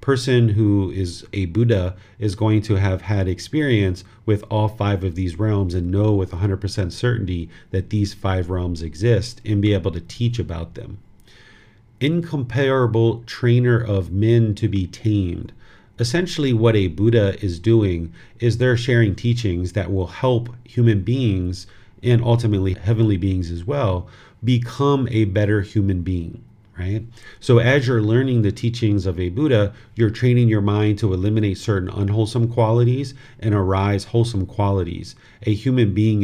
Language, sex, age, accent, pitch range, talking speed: English, male, 40-59, American, 95-115 Hz, 155 wpm